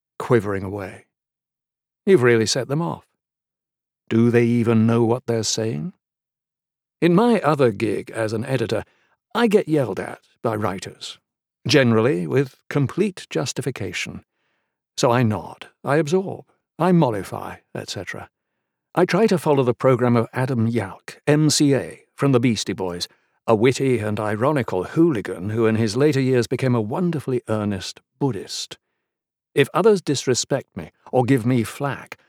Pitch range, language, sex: 115-150 Hz, English, male